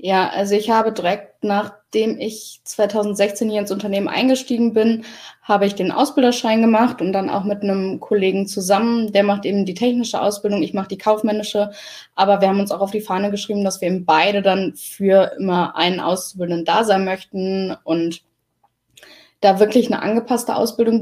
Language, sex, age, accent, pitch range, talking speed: German, female, 10-29, German, 195-215 Hz, 175 wpm